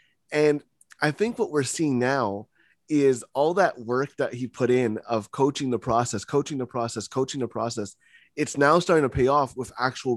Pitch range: 125-155 Hz